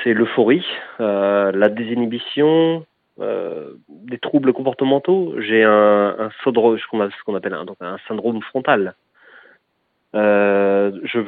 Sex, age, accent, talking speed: male, 30-49, French, 120 wpm